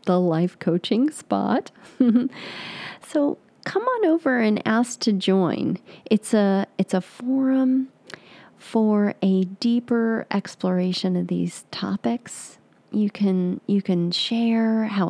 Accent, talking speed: American, 120 wpm